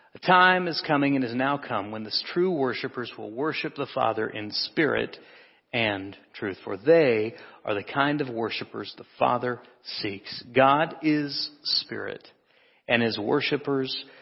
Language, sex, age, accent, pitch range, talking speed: English, male, 40-59, American, 115-150 Hz, 150 wpm